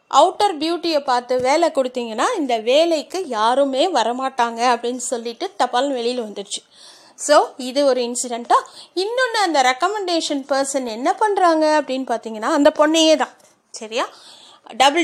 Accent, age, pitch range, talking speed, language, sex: native, 30-49, 255-335 Hz, 125 wpm, Tamil, female